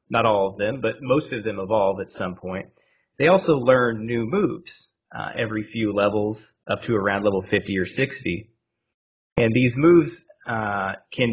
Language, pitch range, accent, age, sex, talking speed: English, 100-120 Hz, American, 30-49, male, 175 wpm